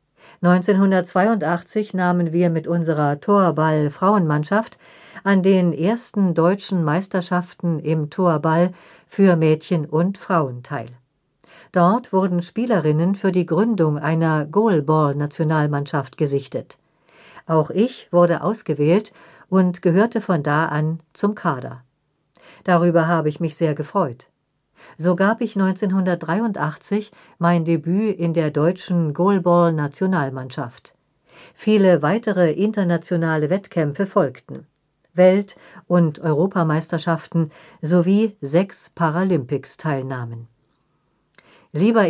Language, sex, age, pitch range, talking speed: German, female, 50-69, 155-190 Hz, 95 wpm